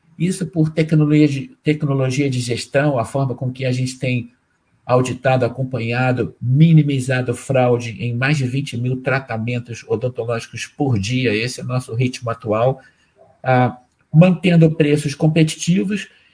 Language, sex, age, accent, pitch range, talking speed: Portuguese, male, 50-69, Brazilian, 130-155 Hz, 130 wpm